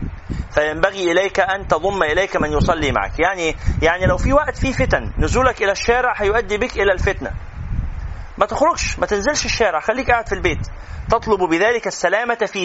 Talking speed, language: 165 wpm, Arabic